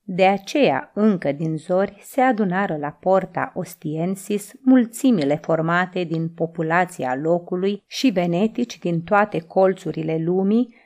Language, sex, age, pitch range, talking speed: Romanian, female, 30-49, 165-235 Hz, 115 wpm